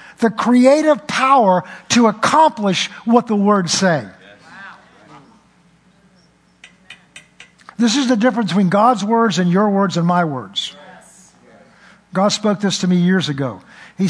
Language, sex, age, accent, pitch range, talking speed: English, male, 50-69, American, 185-250 Hz, 130 wpm